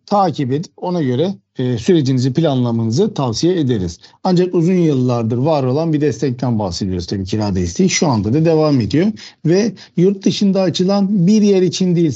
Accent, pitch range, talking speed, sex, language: native, 130-190 Hz, 165 wpm, male, Turkish